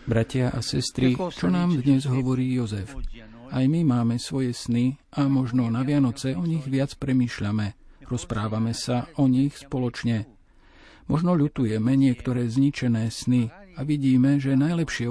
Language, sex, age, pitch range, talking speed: Slovak, male, 50-69, 115-140 Hz, 140 wpm